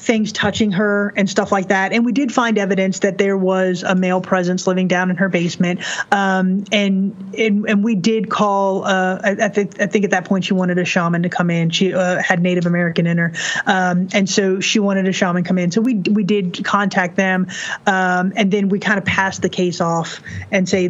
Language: English